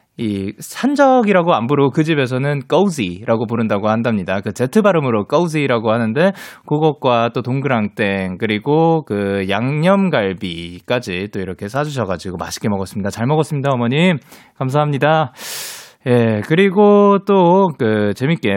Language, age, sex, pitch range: Korean, 20-39, male, 115-185 Hz